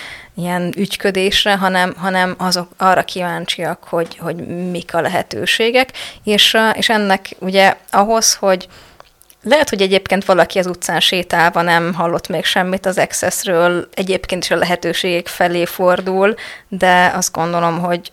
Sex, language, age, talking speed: female, Hungarian, 20-39, 135 wpm